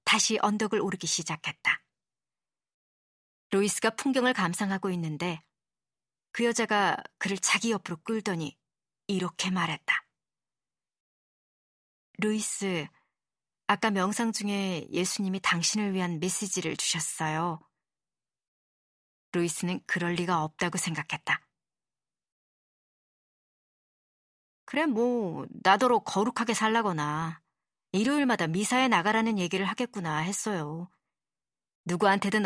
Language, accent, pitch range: Korean, native, 175-220 Hz